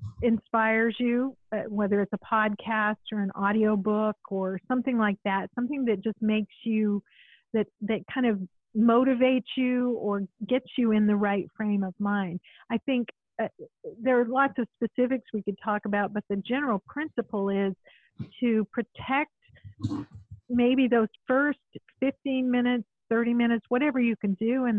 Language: English